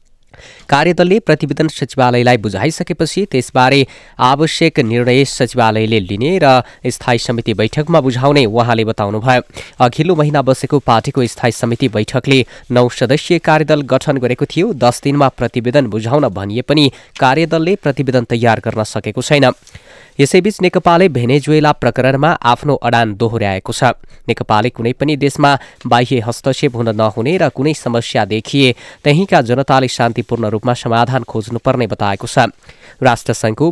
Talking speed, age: 130 wpm, 20-39